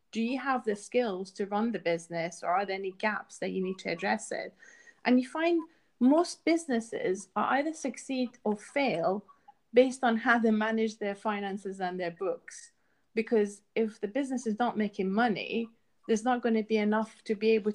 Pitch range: 195-230 Hz